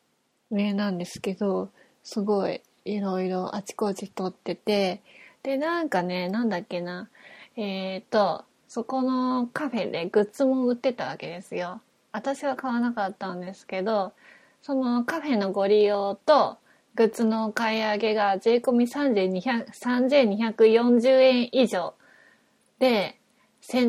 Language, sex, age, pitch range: Japanese, female, 20-39, 195-240 Hz